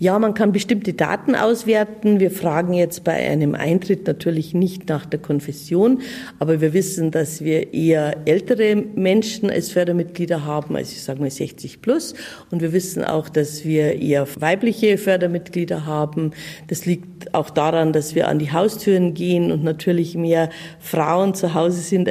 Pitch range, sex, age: 150-180 Hz, female, 50-69